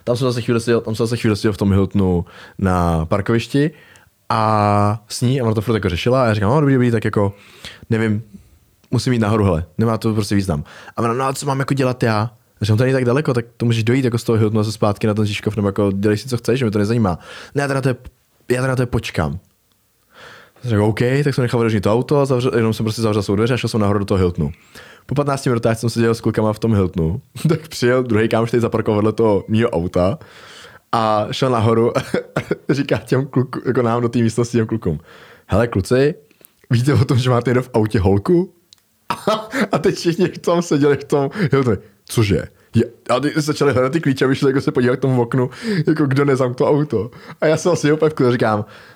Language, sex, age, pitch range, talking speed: Czech, male, 20-39, 105-130 Hz, 215 wpm